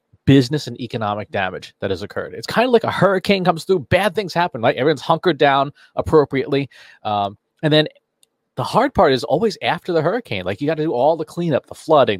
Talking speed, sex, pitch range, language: 215 wpm, male, 110-150 Hz, English